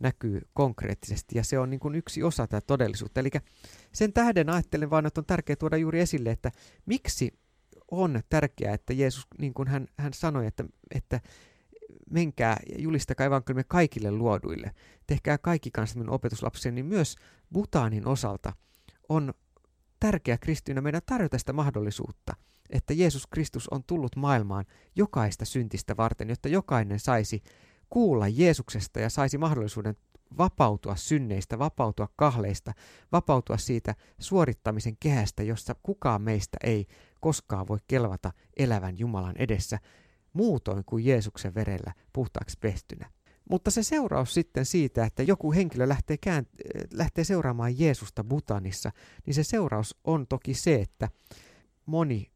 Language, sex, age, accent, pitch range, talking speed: Finnish, male, 30-49, native, 110-155 Hz, 140 wpm